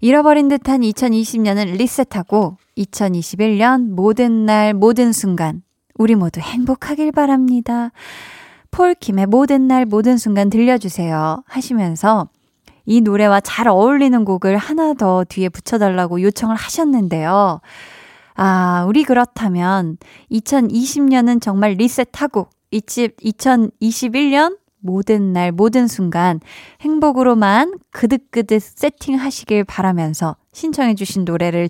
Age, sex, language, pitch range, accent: 20-39, female, Korean, 190-255 Hz, native